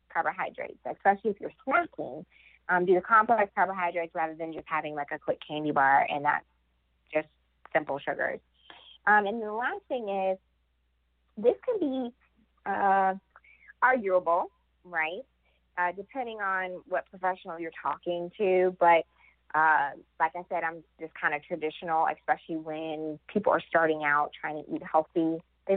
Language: English